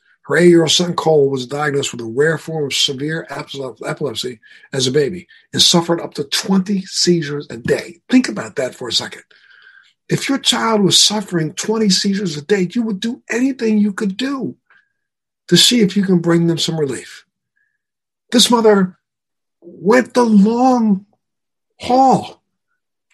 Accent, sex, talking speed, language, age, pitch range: American, male, 160 wpm, English, 60-79, 170-215 Hz